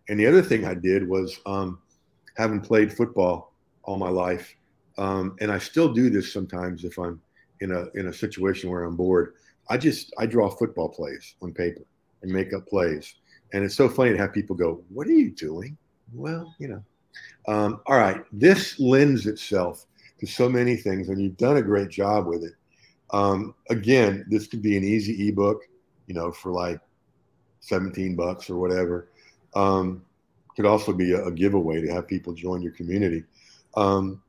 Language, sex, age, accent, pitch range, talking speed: English, male, 50-69, American, 95-115 Hz, 185 wpm